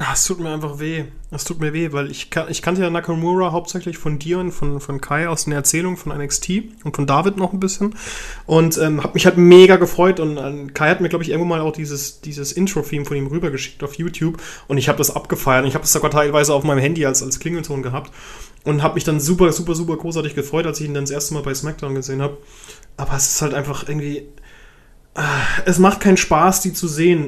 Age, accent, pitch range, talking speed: 30-49, German, 145-170 Hz, 240 wpm